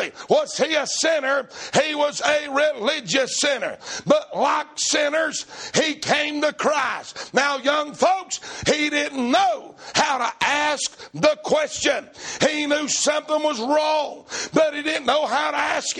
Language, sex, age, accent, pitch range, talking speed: English, male, 60-79, American, 280-305 Hz, 145 wpm